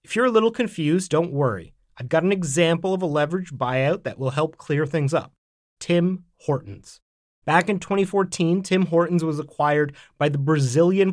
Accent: American